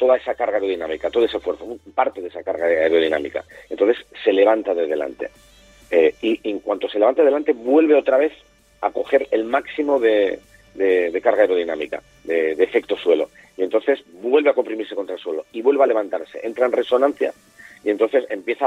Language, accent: Spanish, Spanish